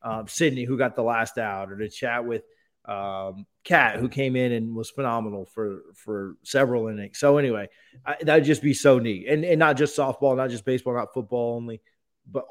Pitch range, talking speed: 110-160 Hz, 205 wpm